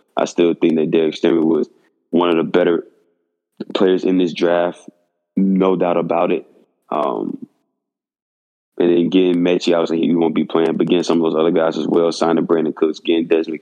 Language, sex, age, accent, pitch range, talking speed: English, male, 20-39, American, 85-95 Hz, 205 wpm